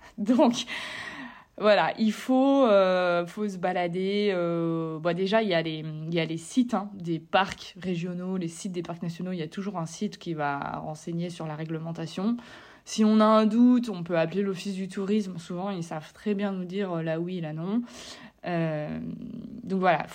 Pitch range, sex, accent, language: 170-215 Hz, female, French, French